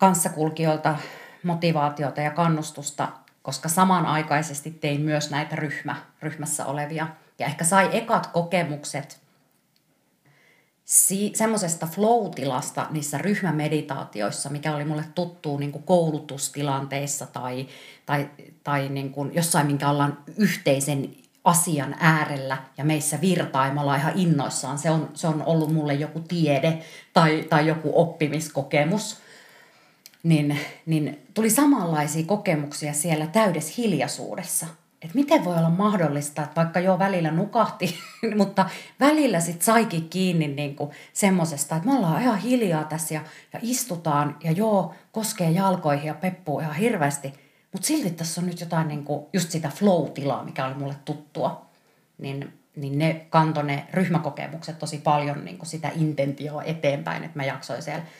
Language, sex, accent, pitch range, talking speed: Finnish, female, native, 145-180 Hz, 130 wpm